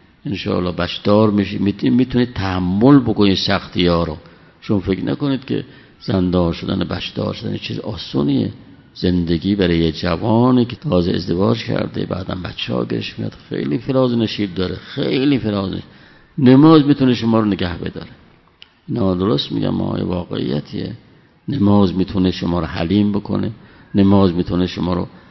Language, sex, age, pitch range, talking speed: Persian, male, 50-69, 90-115 Hz, 135 wpm